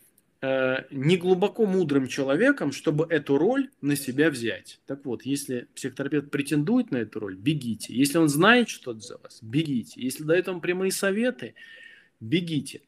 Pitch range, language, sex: 125-180 Hz, Russian, male